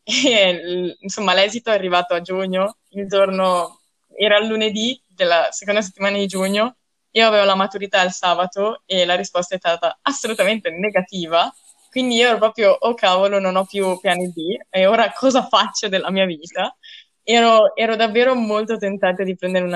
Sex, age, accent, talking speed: female, 20-39, native, 165 wpm